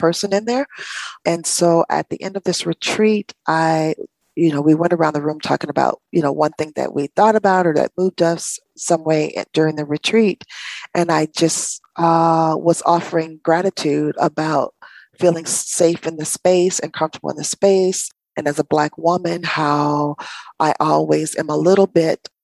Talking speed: 180 wpm